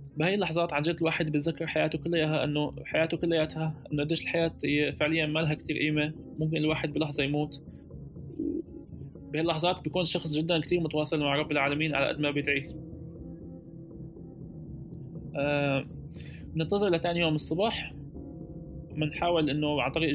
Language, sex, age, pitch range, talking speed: Arabic, male, 20-39, 145-165 Hz, 135 wpm